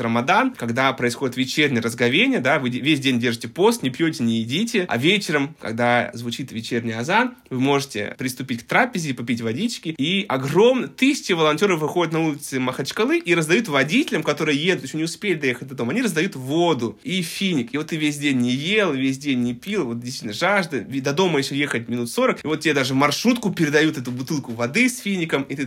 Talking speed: 200 wpm